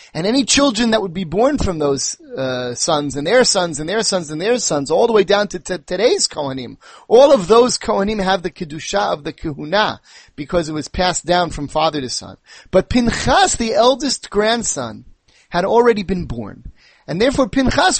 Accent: American